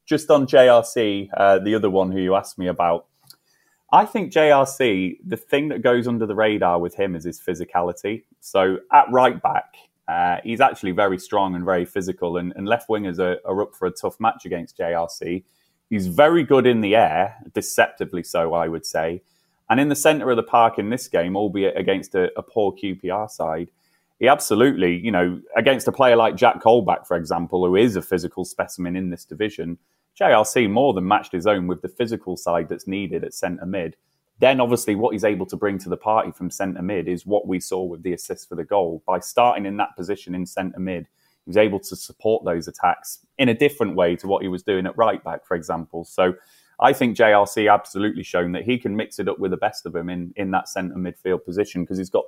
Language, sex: English, male